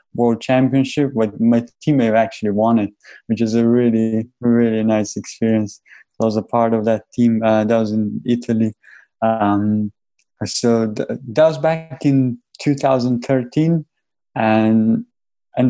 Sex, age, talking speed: male, 20-39, 140 wpm